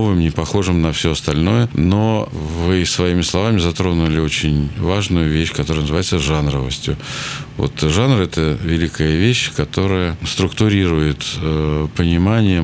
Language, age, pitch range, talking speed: Russian, 50-69, 75-105 Hz, 115 wpm